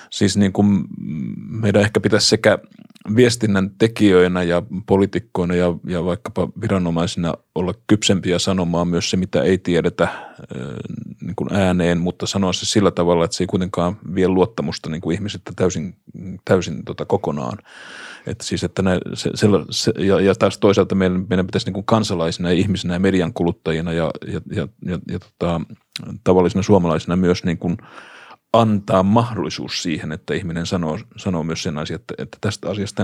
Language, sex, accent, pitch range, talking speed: Finnish, male, native, 85-100 Hz, 155 wpm